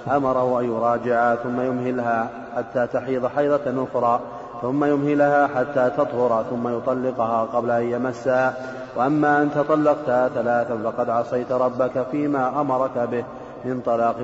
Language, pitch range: Arabic, 120-130 Hz